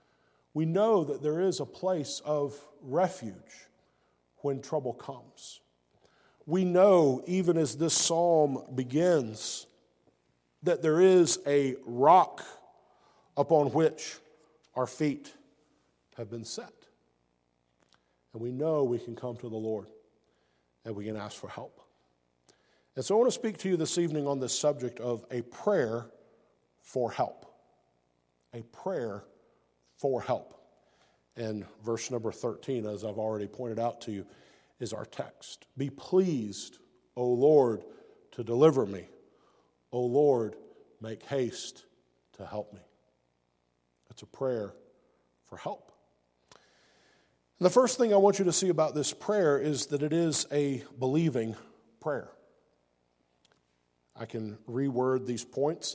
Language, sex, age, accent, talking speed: English, male, 50-69, American, 135 wpm